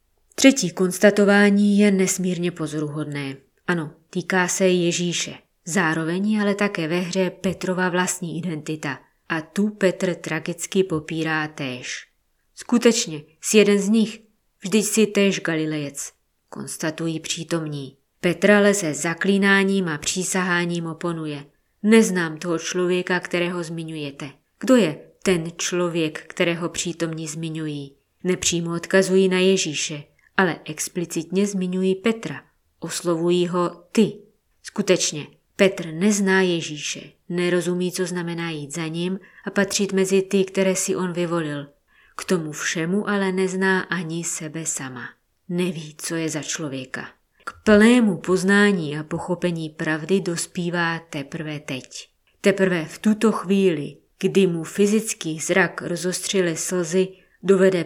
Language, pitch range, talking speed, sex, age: Czech, 160-190 Hz, 120 wpm, female, 20-39